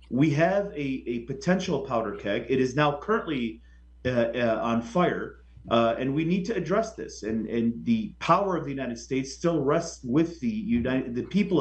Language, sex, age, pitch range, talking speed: Arabic, male, 30-49, 120-160 Hz, 190 wpm